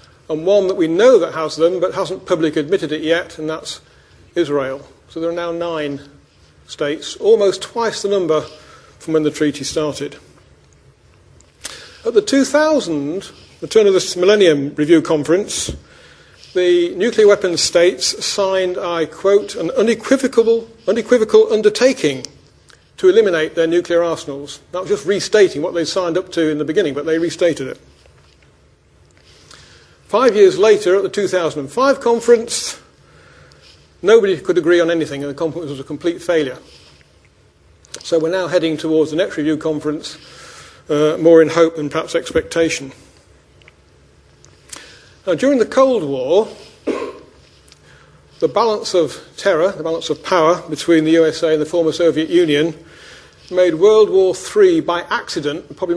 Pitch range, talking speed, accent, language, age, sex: 155-210 Hz, 150 wpm, British, English, 50-69, male